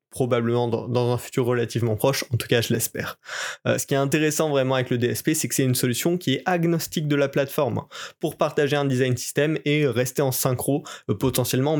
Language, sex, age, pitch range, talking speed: French, male, 20-39, 120-150 Hz, 205 wpm